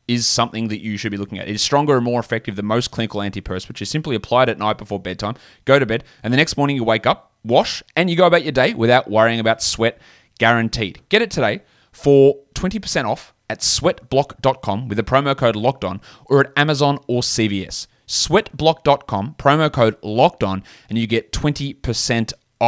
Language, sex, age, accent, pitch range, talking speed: English, male, 20-39, Australian, 110-140 Hz, 195 wpm